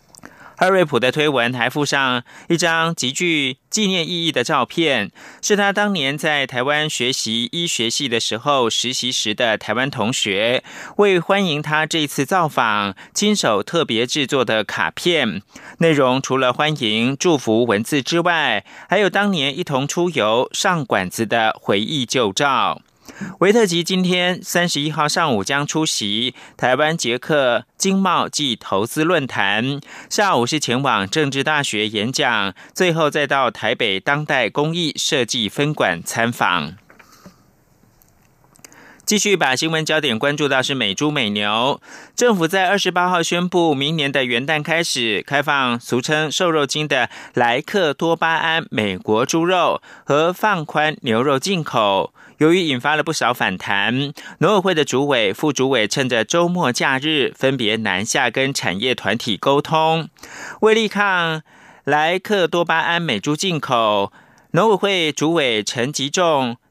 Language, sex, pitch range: German, male, 125-170 Hz